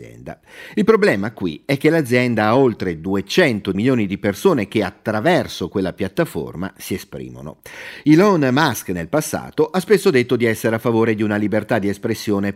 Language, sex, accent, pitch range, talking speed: Italian, male, native, 100-135 Hz, 160 wpm